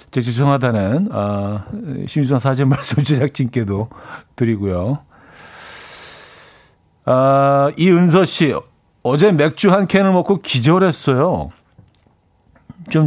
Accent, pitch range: native, 120-160 Hz